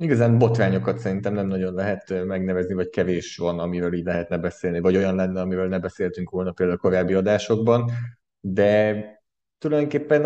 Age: 20-39